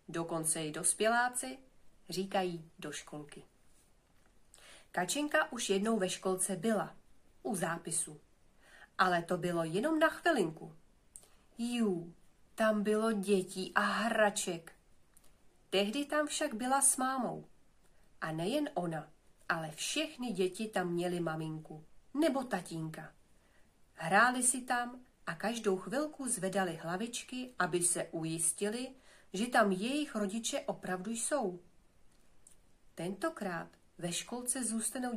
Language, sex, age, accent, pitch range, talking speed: Czech, female, 40-59, native, 175-245 Hz, 110 wpm